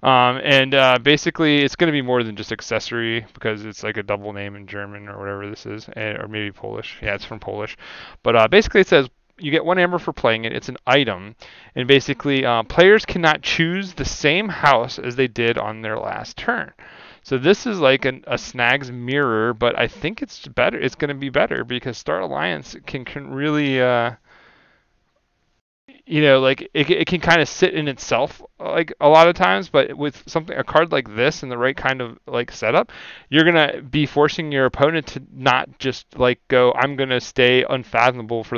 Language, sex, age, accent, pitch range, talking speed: English, male, 30-49, American, 115-150 Hz, 205 wpm